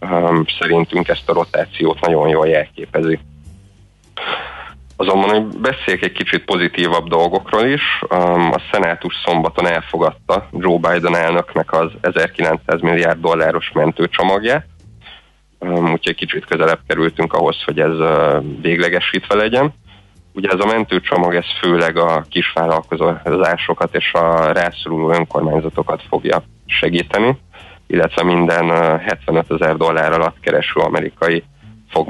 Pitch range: 80-95 Hz